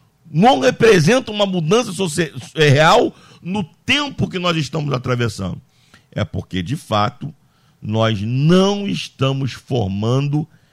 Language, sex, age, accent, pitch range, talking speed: Portuguese, male, 50-69, Brazilian, 120-165 Hz, 105 wpm